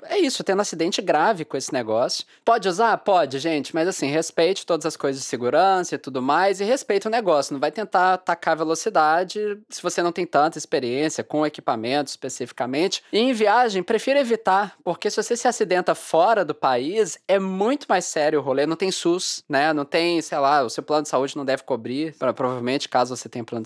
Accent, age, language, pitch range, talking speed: Brazilian, 20-39, English, 150-195 Hz, 205 wpm